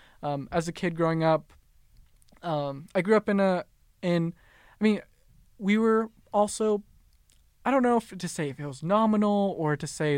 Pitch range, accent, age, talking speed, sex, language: 140-160 Hz, American, 20-39, 185 wpm, male, English